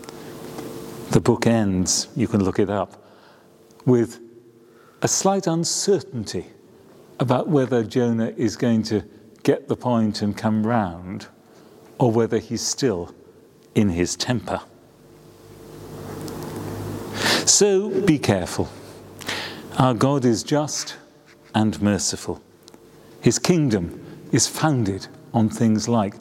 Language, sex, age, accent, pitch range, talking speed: English, male, 40-59, British, 105-130 Hz, 110 wpm